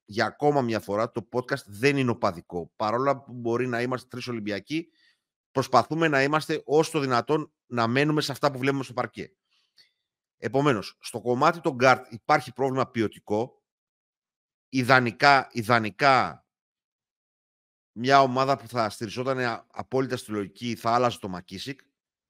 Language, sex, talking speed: Greek, male, 140 wpm